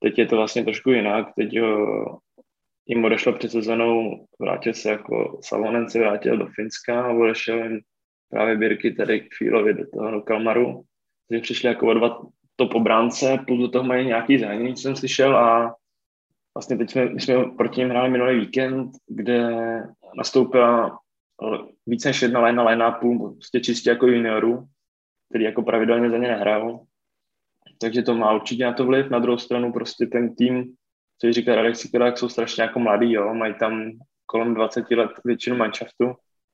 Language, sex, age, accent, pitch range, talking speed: Czech, male, 20-39, native, 110-120 Hz, 170 wpm